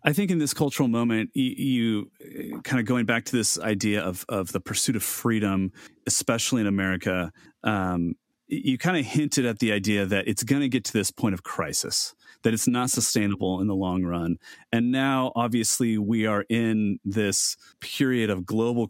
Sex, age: male, 30-49